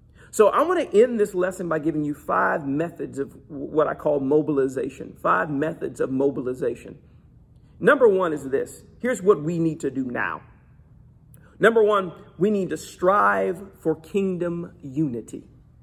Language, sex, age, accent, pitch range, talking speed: English, male, 50-69, American, 155-210 Hz, 155 wpm